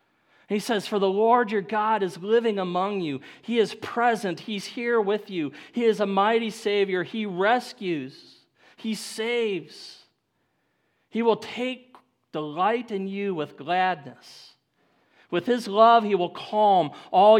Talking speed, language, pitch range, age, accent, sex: 145 wpm, English, 155-215 Hz, 40-59, American, male